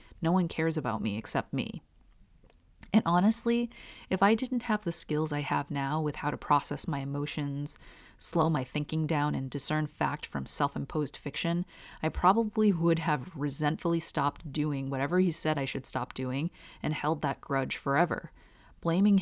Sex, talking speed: female, 170 wpm